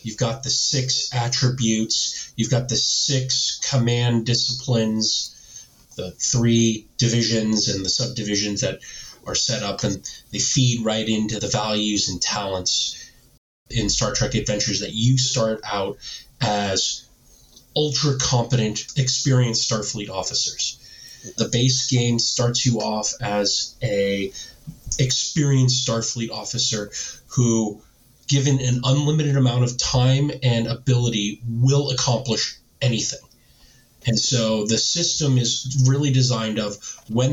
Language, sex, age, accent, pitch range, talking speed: English, male, 30-49, American, 110-130 Hz, 120 wpm